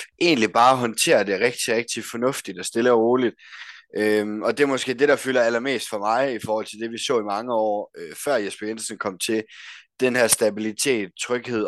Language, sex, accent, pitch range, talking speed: Danish, male, native, 100-115 Hz, 210 wpm